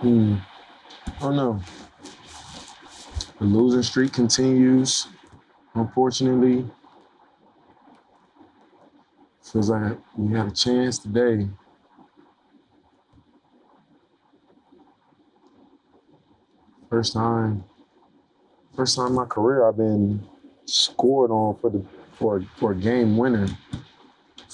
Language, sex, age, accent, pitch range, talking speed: English, male, 20-39, American, 100-120 Hz, 90 wpm